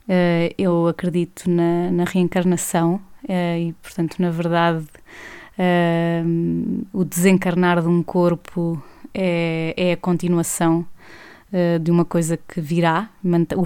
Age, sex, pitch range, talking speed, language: 20-39, female, 170-185 Hz, 105 wpm, Portuguese